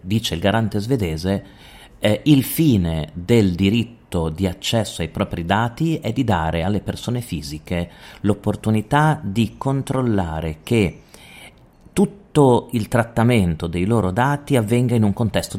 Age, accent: 40-59, native